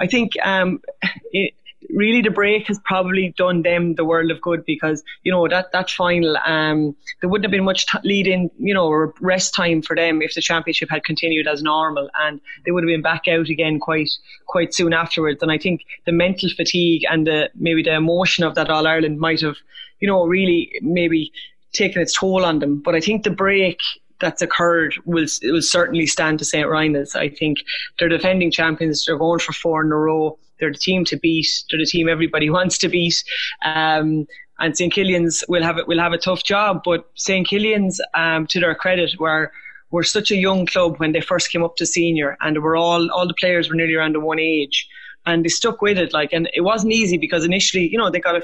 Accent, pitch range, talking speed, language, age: Irish, 160-185 Hz, 225 wpm, English, 20-39